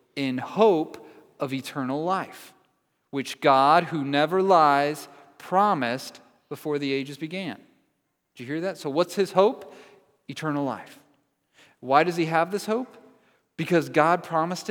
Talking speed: 140 wpm